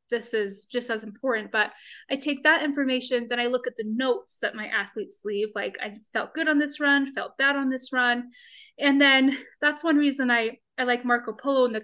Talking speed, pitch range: 225 wpm, 220-270 Hz